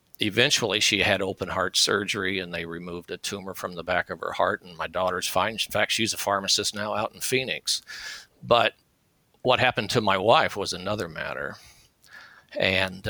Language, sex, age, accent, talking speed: English, male, 50-69, American, 185 wpm